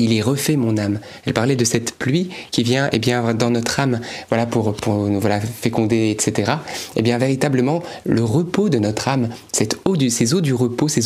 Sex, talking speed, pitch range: male, 235 wpm, 120-155 Hz